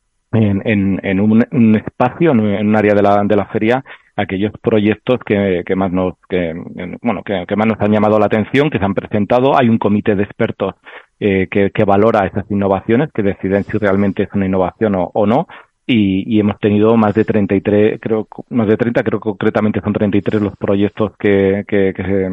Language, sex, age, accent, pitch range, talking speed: Spanish, male, 30-49, Spanish, 100-110 Hz, 205 wpm